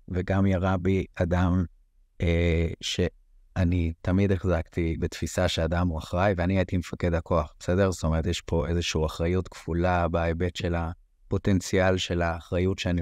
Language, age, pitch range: Hebrew, 30-49, 85-100 Hz